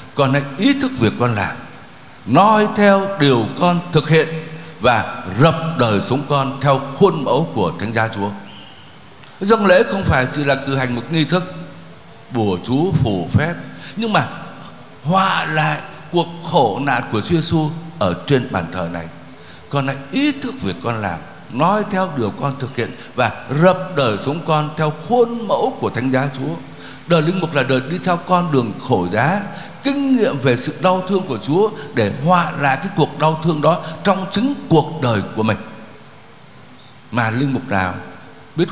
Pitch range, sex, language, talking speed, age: 120-170 Hz, male, Vietnamese, 180 wpm, 60-79